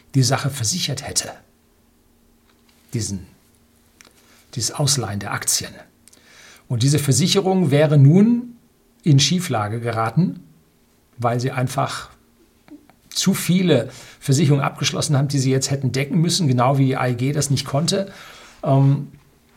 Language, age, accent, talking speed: German, 50-69, German, 115 wpm